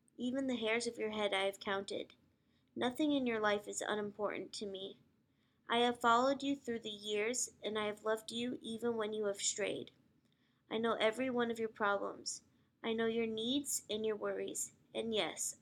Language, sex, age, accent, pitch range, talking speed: English, female, 20-39, American, 215-250 Hz, 190 wpm